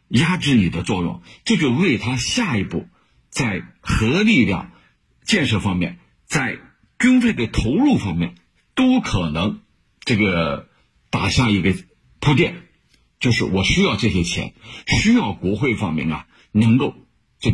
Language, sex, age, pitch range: Chinese, male, 50-69, 95-145 Hz